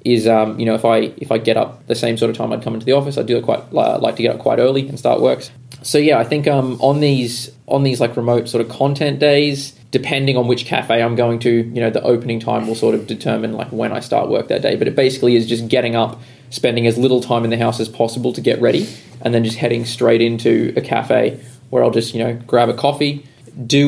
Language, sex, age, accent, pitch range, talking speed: English, male, 20-39, Australian, 115-130 Hz, 270 wpm